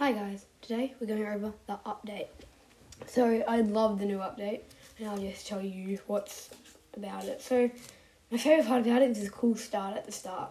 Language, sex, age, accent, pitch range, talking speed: English, female, 10-29, Australian, 185-230 Hz, 200 wpm